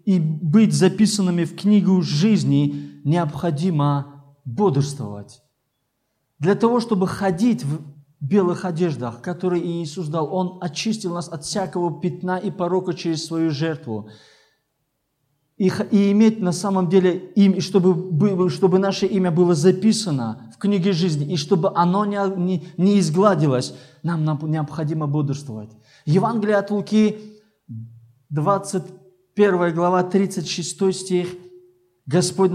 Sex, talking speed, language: male, 120 wpm, Russian